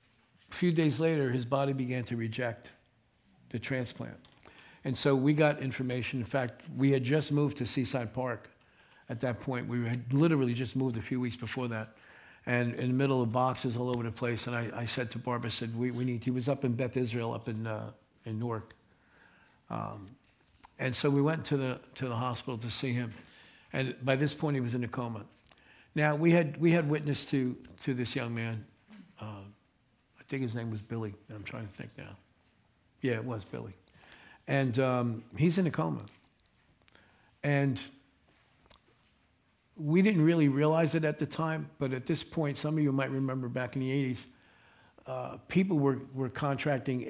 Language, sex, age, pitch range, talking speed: English, male, 60-79, 120-140 Hz, 195 wpm